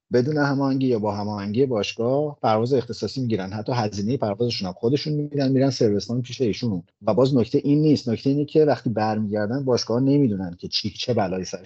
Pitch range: 105-135 Hz